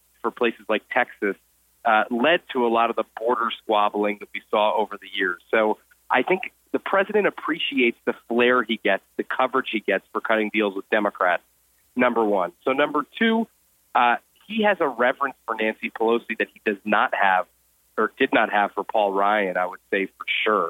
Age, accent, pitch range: 30-49, American, 100-130 Hz